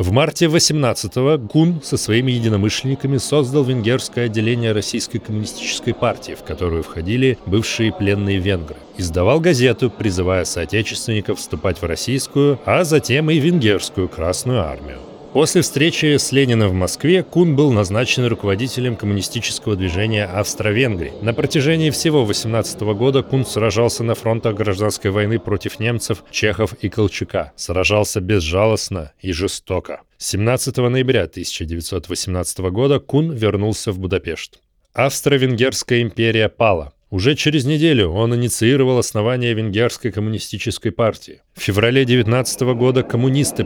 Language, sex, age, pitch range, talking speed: Russian, male, 30-49, 100-130 Hz, 125 wpm